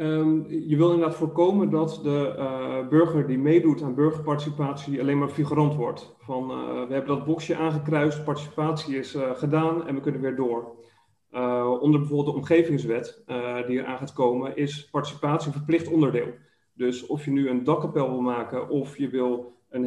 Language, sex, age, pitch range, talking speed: Dutch, male, 30-49, 130-150 Hz, 180 wpm